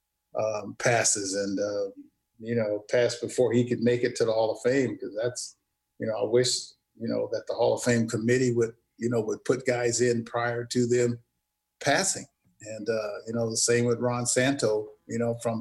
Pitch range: 110-120 Hz